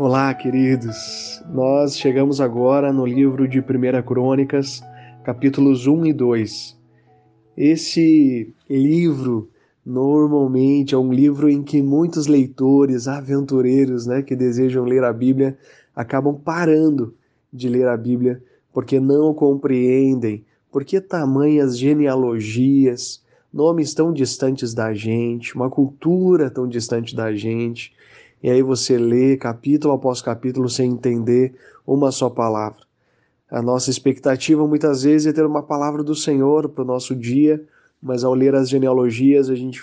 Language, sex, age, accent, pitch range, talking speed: Portuguese, male, 20-39, Brazilian, 125-140 Hz, 135 wpm